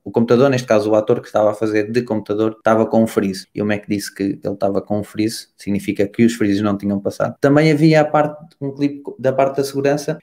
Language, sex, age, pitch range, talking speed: Portuguese, male, 20-39, 105-135 Hz, 250 wpm